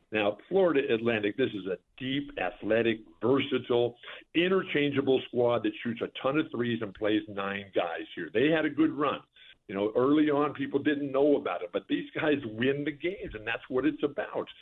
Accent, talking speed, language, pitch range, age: American, 195 wpm, English, 115-175 Hz, 50-69